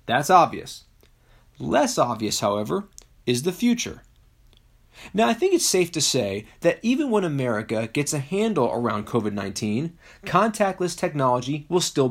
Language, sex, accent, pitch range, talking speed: English, male, American, 120-190 Hz, 140 wpm